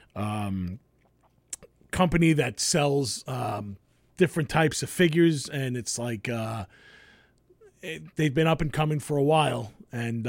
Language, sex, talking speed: English, male, 135 wpm